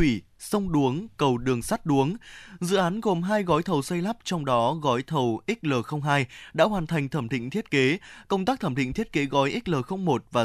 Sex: male